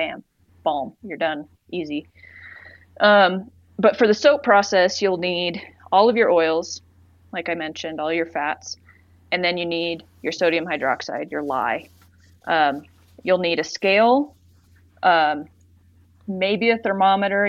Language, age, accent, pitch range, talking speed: English, 20-39, American, 145-185 Hz, 140 wpm